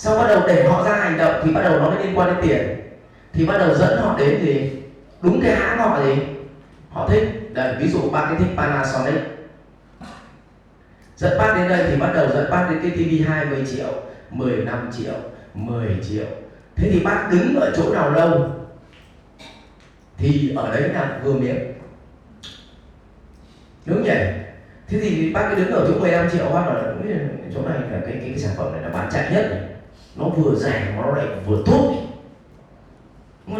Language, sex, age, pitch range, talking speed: English, male, 20-39, 130-195 Hz, 195 wpm